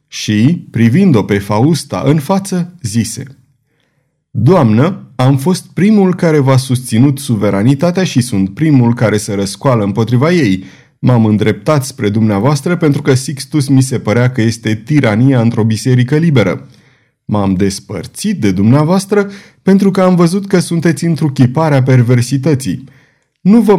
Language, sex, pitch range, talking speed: Romanian, male, 115-155 Hz, 140 wpm